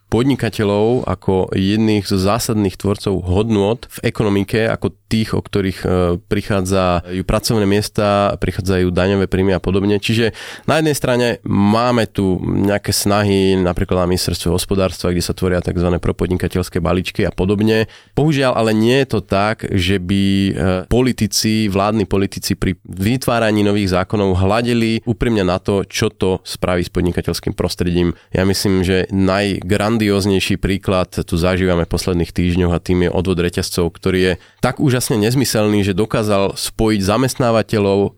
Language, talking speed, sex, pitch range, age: Slovak, 140 wpm, male, 95-110 Hz, 20-39